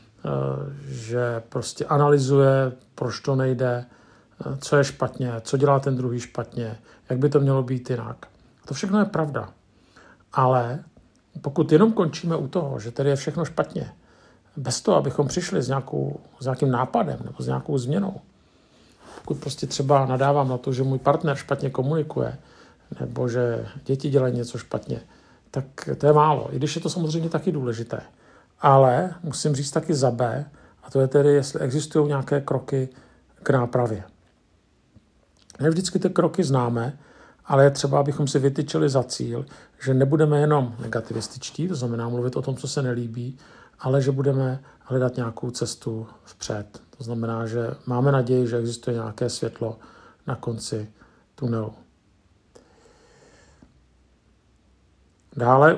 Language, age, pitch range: Czech, 50-69, 120-145 Hz